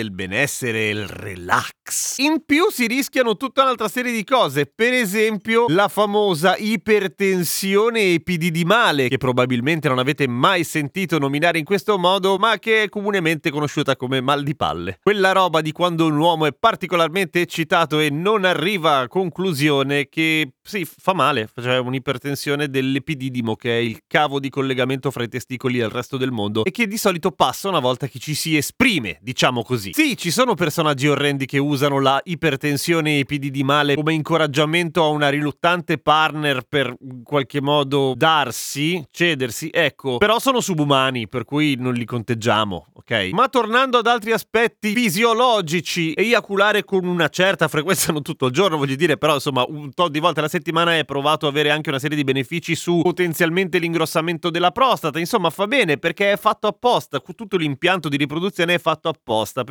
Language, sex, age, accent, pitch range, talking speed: Italian, male, 30-49, native, 140-190 Hz, 175 wpm